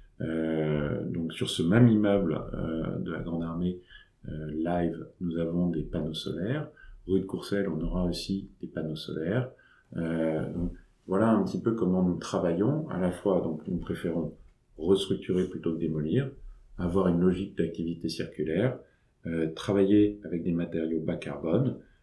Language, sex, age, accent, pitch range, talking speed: French, male, 40-59, French, 85-100 Hz, 160 wpm